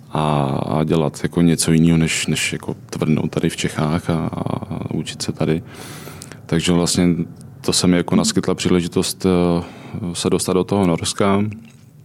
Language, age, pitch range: Czech, 20-39, 85-90 Hz